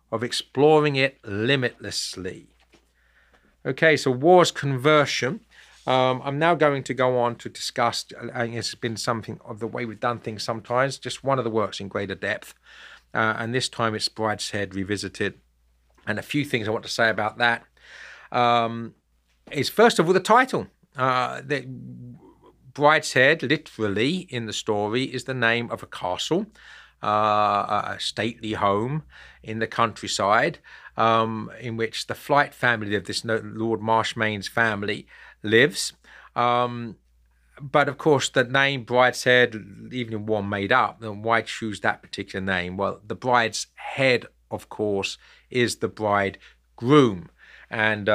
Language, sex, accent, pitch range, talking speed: English, male, British, 105-130 Hz, 150 wpm